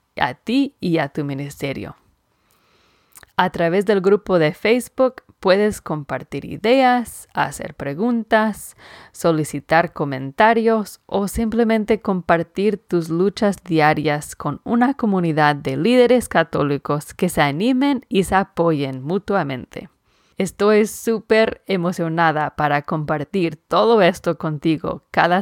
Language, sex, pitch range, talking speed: English, female, 155-210 Hz, 110 wpm